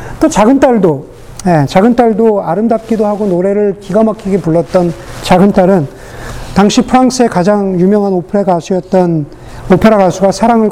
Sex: male